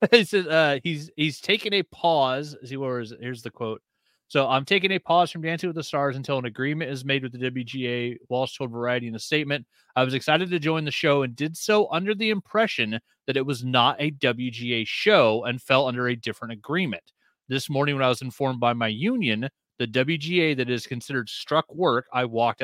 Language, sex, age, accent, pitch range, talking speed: English, male, 30-49, American, 120-155 Hz, 220 wpm